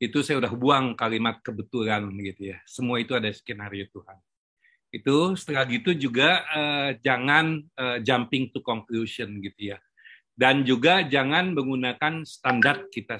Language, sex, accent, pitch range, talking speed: Indonesian, male, native, 120-155 Hz, 140 wpm